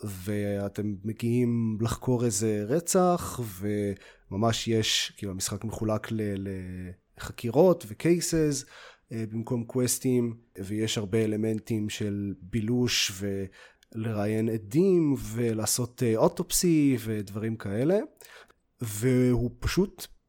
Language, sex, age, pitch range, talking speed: Hebrew, male, 30-49, 105-130 Hz, 85 wpm